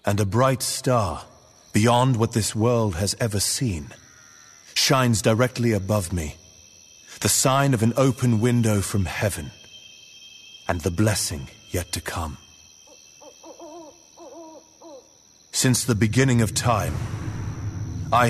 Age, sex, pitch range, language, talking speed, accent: 40-59, male, 90-115 Hz, English, 115 wpm, British